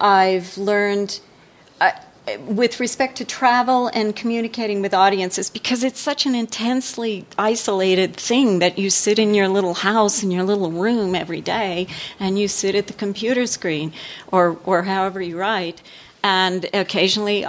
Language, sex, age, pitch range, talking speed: English, female, 40-59, 185-225 Hz, 155 wpm